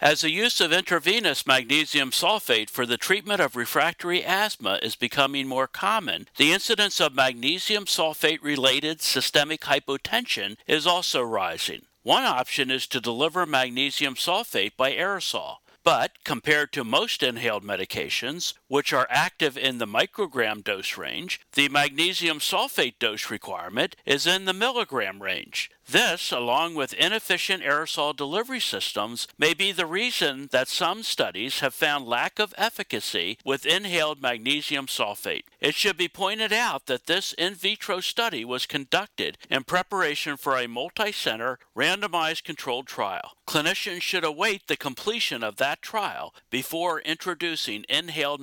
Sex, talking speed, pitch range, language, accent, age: male, 140 wpm, 135-185 Hz, English, American, 60-79